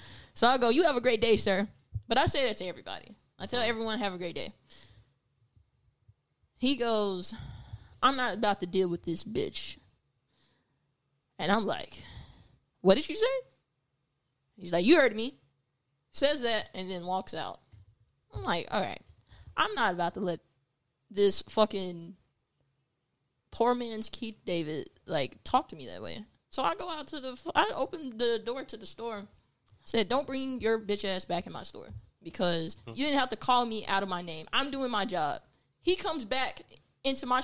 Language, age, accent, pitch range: English, 10-29, American, 160-255 Hz